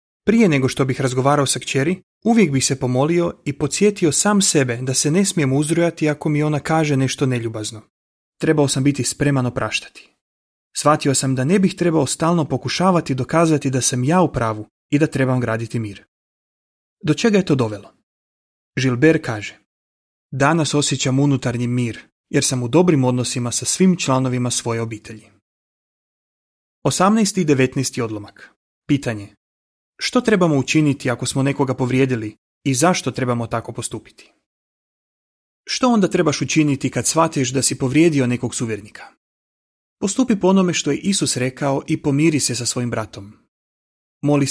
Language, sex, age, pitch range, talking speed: Croatian, male, 30-49, 125-160 Hz, 150 wpm